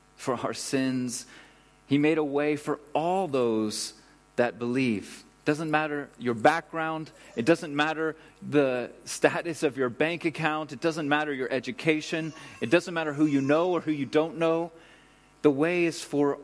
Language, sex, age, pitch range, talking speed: English, male, 30-49, 120-155 Hz, 170 wpm